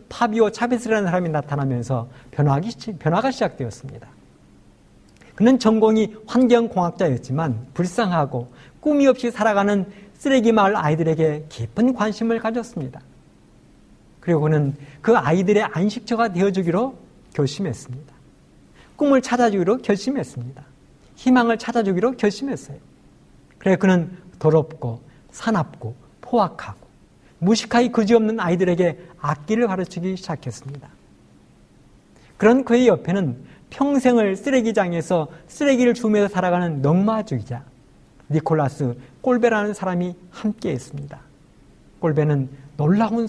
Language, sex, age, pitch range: Korean, male, 50-69, 145-230 Hz